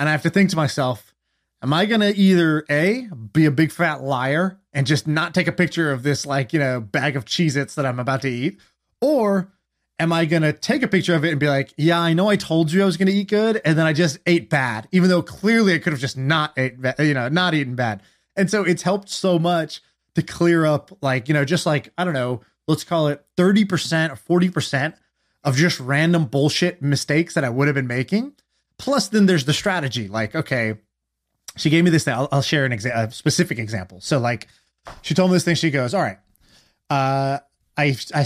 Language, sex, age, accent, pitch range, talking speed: English, male, 20-39, American, 135-175 Hz, 235 wpm